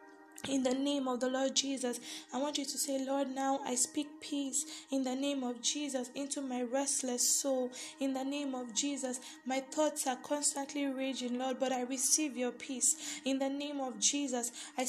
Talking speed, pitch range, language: 195 wpm, 255-285 Hz, English